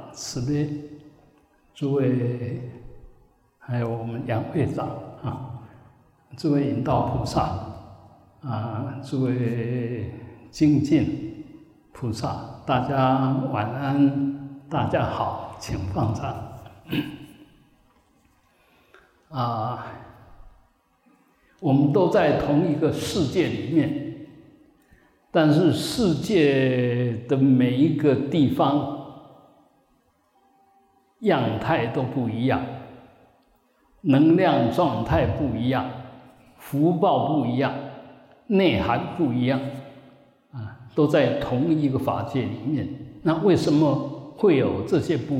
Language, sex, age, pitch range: Chinese, male, 60-79, 125-150 Hz